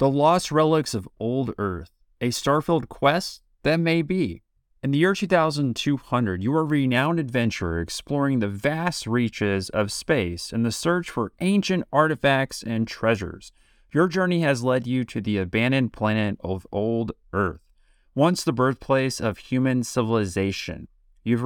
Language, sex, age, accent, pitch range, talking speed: English, male, 30-49, American, 110-145 Hz, 150 wpm